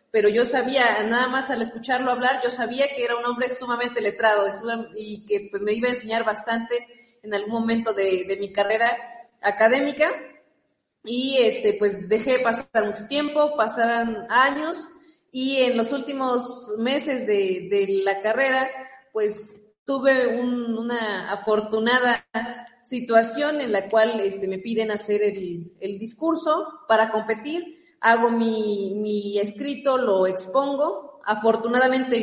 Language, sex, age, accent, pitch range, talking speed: Spanish, female, 30-49, Mexican, 215-260 Hz, 140 wpm